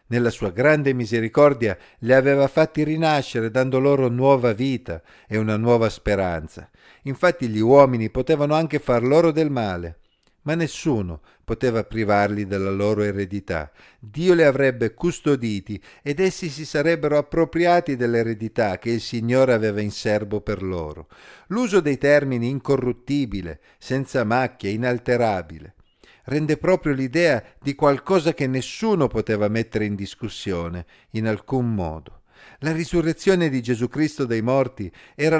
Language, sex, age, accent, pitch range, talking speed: Italian, male, 50-69, native, 105-145 Hz, 135 wpm